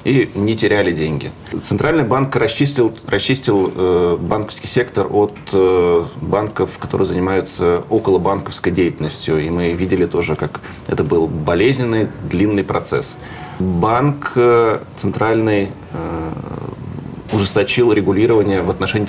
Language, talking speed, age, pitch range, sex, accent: Russian, 100 wpm, 30-49, 90-125 Hz, male, native